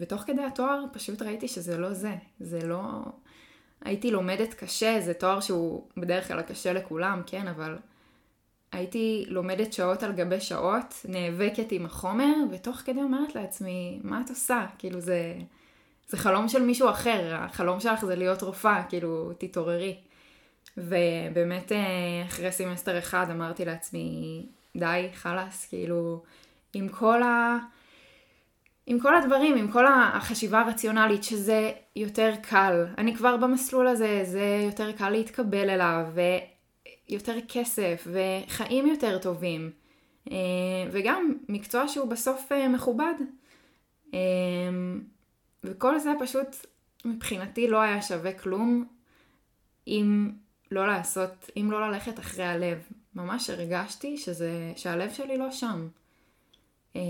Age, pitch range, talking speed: 10-29, 180-240 Hz, 120 wpm